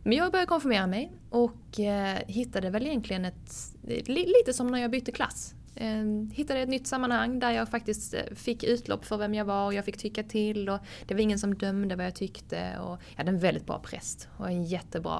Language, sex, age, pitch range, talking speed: Swedish, female, 20-39, 170-220 Hz, 210 wpm